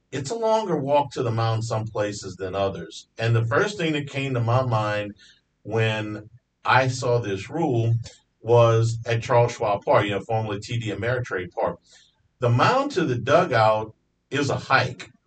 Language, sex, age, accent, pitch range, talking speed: English, male, 50-69, American, 110-135 Hz, 175 wpm